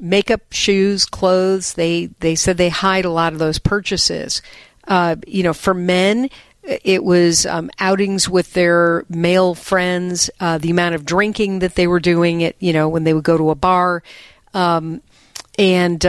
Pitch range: 165-195 Hz